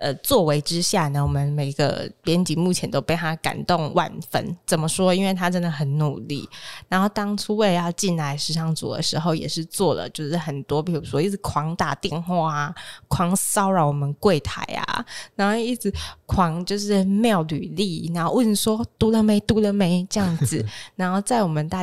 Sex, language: female, Chinese